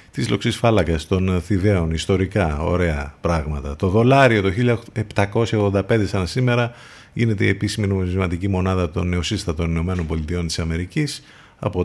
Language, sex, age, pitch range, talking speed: Greek, male, 50-69, 85-110 Hz, 130 wpm